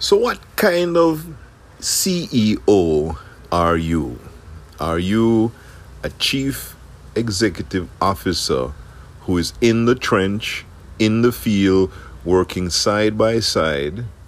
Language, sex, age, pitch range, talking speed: English, male, 50-69, 85-115 Hz, 105 wpm